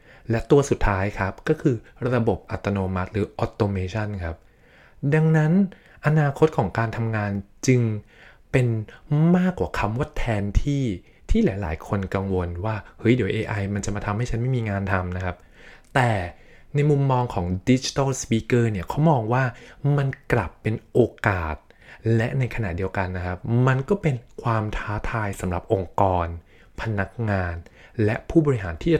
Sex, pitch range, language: male, 100-130 Hz, Thai